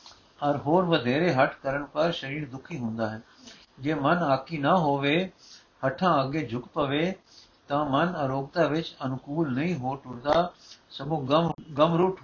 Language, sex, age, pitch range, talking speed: Punjabi, male, 60-79, 140-175 Hz, 150 wpm